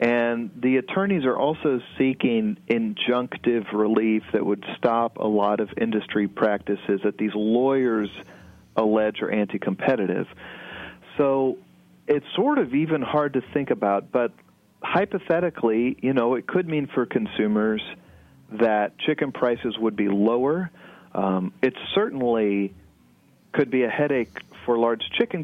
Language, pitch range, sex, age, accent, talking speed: English, 105-130 Hz, male, 40-59, American, 130 wpm